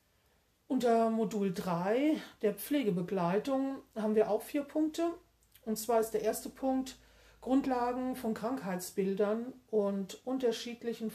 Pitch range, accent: 195-245 Hz, German